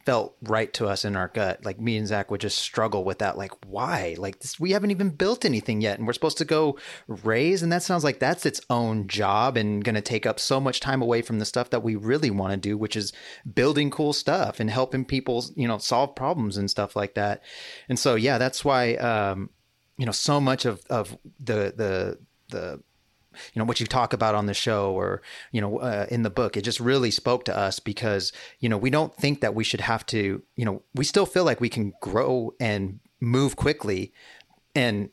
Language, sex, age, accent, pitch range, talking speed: English, male, 30-49, American, 105-135 Hz, 230 wpm